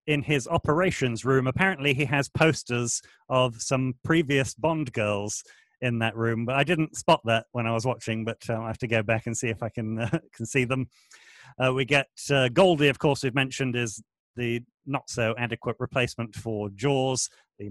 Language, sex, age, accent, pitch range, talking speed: English, male, 40-59, British, 115-135 Hz, 195 wpm